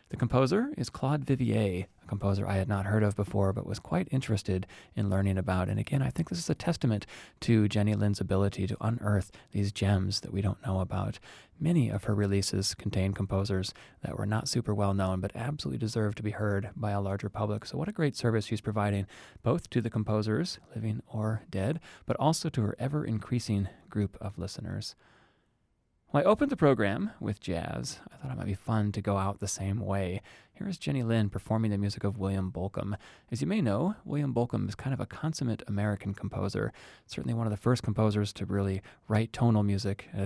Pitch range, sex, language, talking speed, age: 100-120 Hz, male, English, 205 wpm, 30-49